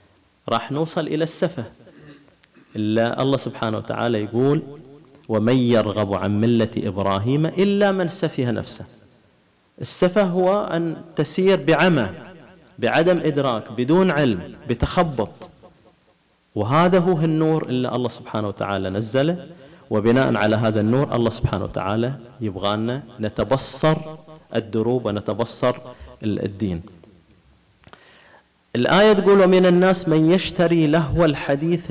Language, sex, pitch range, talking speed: Arabic, male, 110-155 Hz, 105 wpm